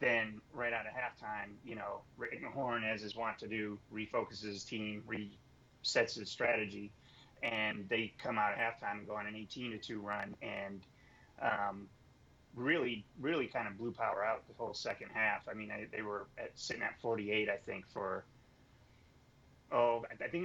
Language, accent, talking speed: English, American, 170 wpm